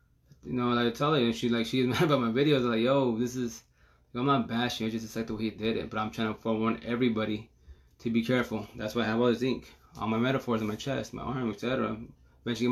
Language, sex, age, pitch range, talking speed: English, male, 20-39, 110-130 Hz, 275 wpm